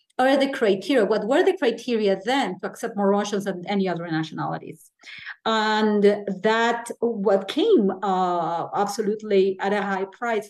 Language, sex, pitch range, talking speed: English, female, 200-255 Hz, 145 wpm